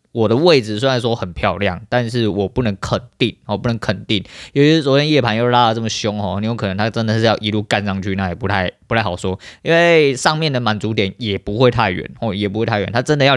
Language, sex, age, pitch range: Chinese, male, 20-39, 100-125 Hz